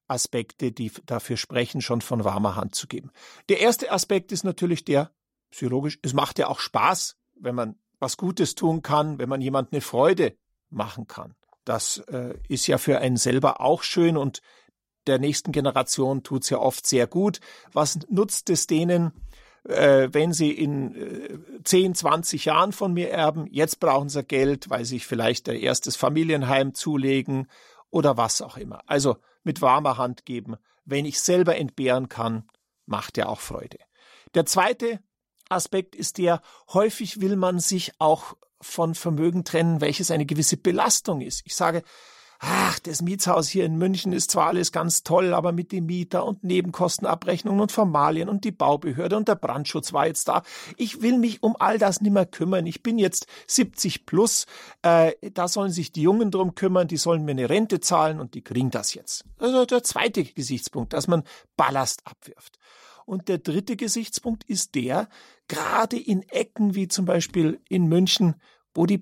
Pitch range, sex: 140-190 Hz, male